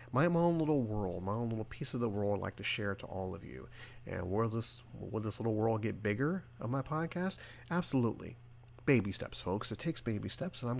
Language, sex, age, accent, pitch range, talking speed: English, male, 40-59, American, 100-125 Hz, 235 wpm